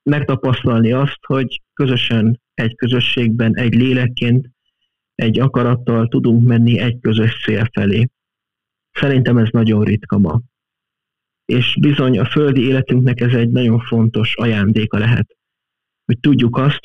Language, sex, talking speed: Hungarian, male, 125 wpm